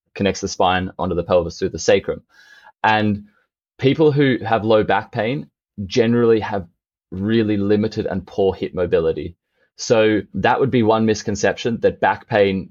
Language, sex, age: English, male, 20-39